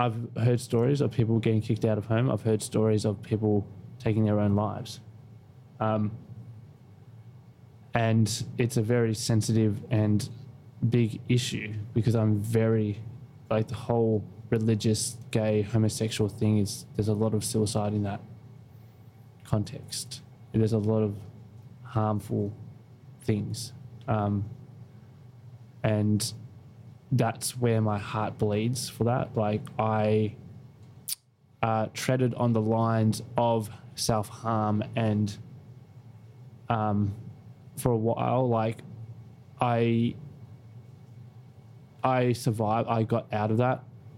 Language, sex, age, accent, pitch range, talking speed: English, male, 20-39, Australian, 110-125 Hz, 115 wpm